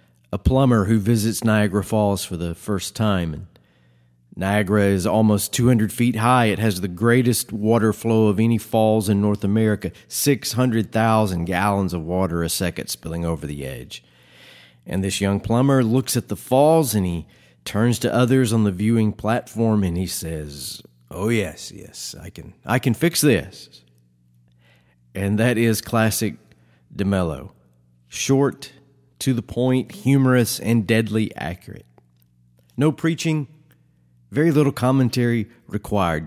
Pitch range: 85-120 Hz